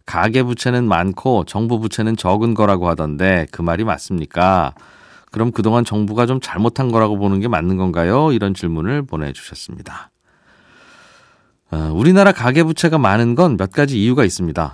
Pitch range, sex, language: 95-140 Hz, male, Korean